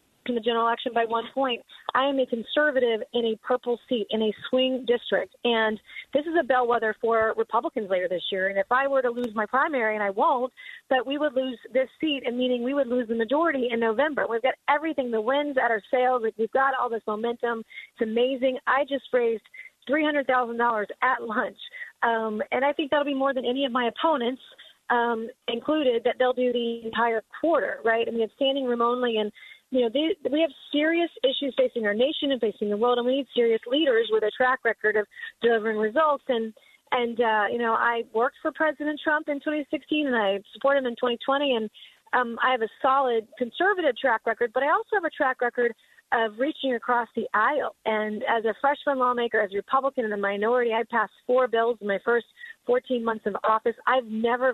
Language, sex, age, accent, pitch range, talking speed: English, female, 30-49, American, 225-275 Hz, 210 wpm